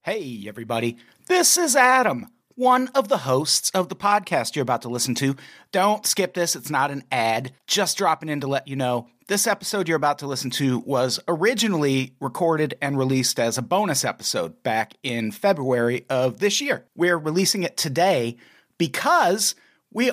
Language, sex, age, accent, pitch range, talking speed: English, male, 40-59, American, 130-200 Hz, 175 wpm